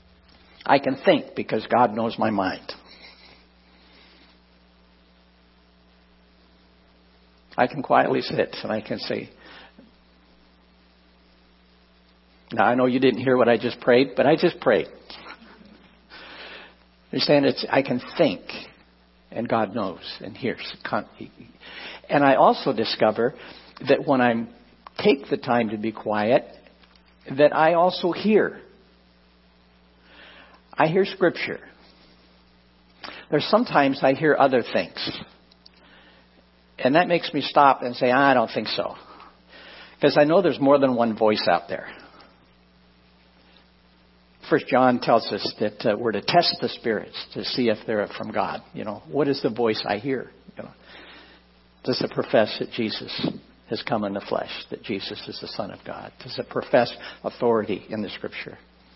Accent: American